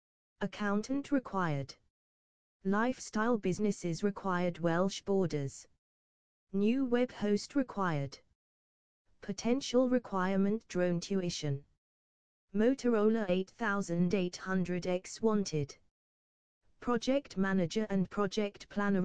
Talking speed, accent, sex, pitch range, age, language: 70 wpm, British, female, 155-210 Hz, 20-39, English